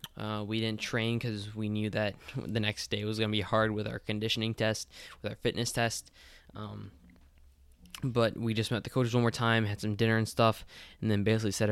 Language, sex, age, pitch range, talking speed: English, male, 10-29, 105-115 Hz, 215 wpm